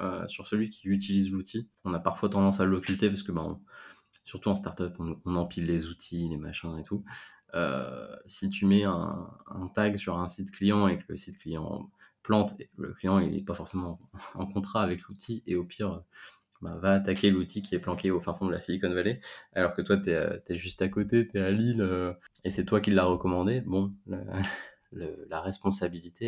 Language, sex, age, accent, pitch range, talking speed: French, male, 20-39, French, 90-100 Hz, 210 wpm